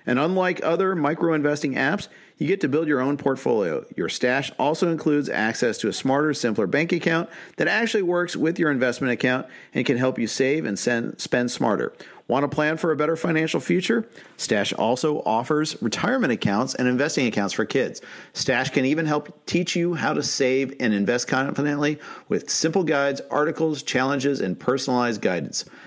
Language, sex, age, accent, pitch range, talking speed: English, male, 40-59, American, 125-160 Hz, 175 wpm